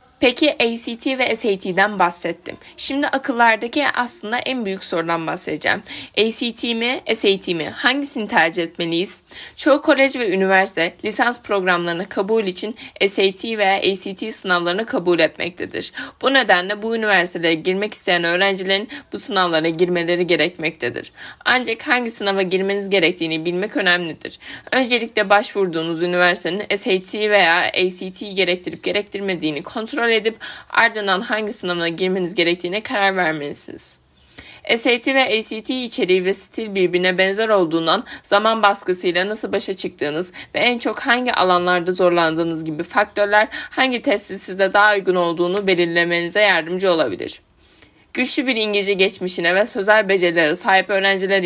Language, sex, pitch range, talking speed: Turkish, female, 180-230 Hz, 125 wpm